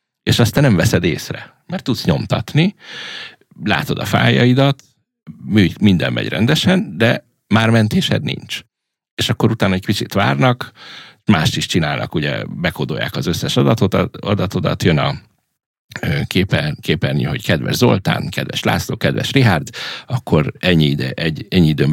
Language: Hungarian